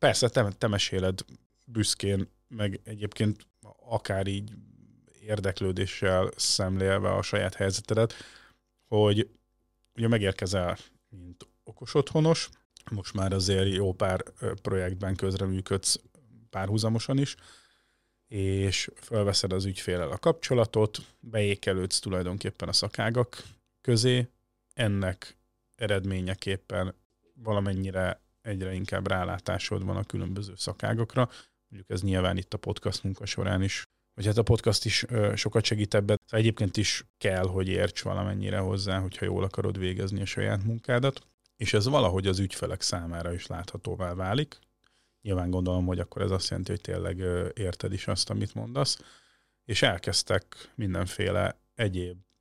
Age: 30-49